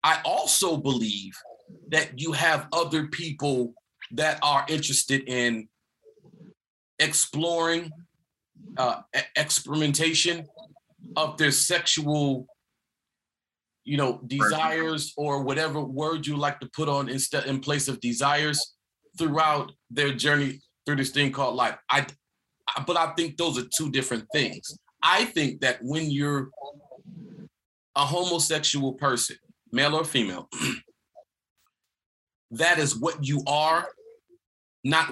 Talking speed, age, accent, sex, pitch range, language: 115 wpm, 30-49, American, male, 130-160 Hz, English